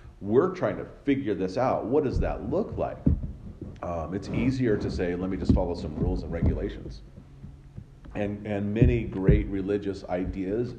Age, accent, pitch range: 40-59, American, 80-105 Hz